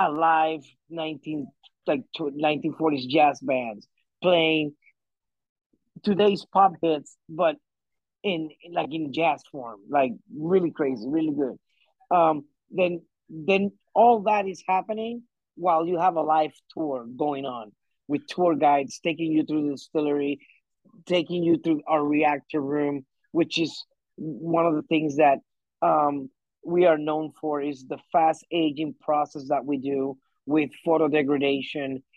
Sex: male